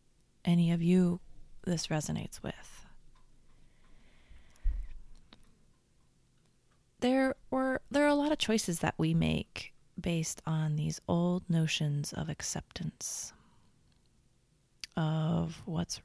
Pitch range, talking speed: 140-185 Hz, 95 wpm